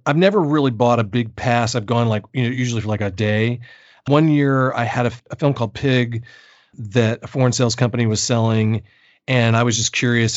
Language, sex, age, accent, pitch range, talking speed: English, male, 40-59, American, 115-130 Hz, 225 wpm